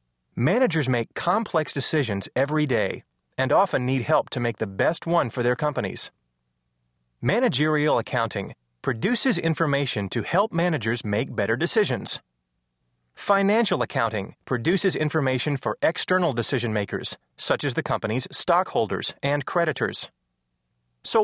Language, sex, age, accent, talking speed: English, male, 30-49, American, 120 wpm